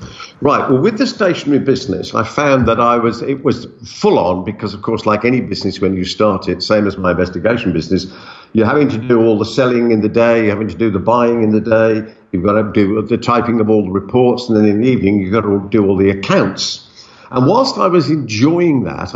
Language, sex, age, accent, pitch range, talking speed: English, male, 50-69, British, 105-140 Hz, 240 wpm